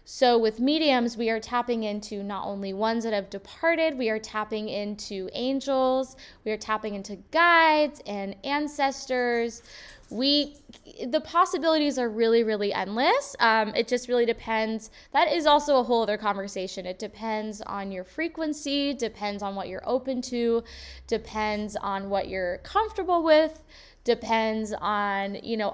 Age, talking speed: 10-29, 150 wpm